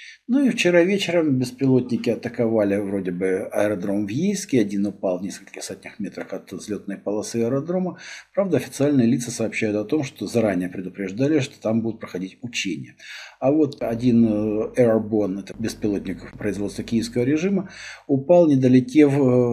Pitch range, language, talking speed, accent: 100-130 Hz, Russian, 140 wpm, native